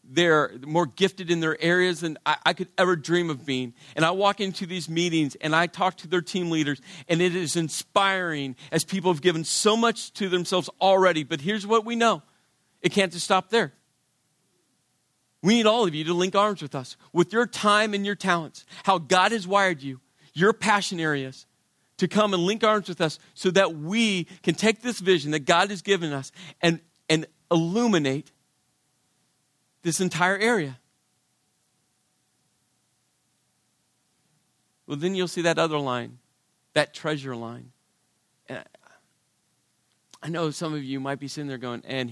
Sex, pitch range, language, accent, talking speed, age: male, 140-185 Hz, English, American, 170 wpm, 40-59